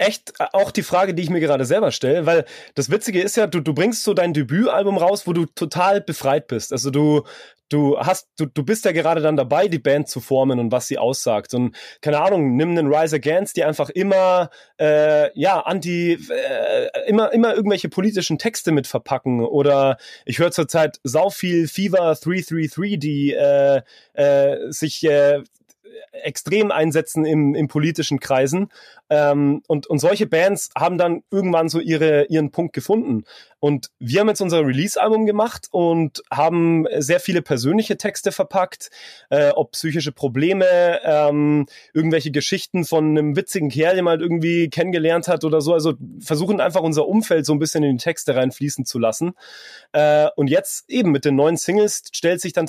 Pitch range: 145-185 Hz